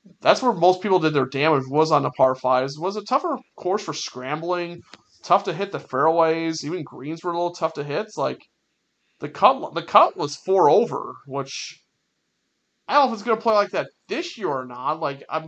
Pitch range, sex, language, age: 140-200 Hz, male, English, 30-49